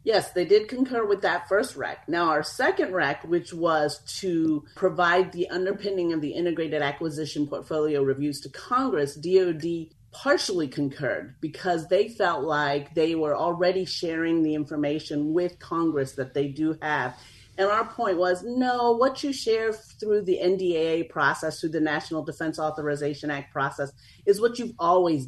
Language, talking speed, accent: English, 160 wpm, American